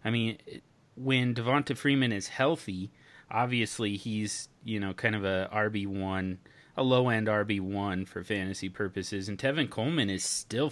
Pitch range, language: 100-125 Hz, English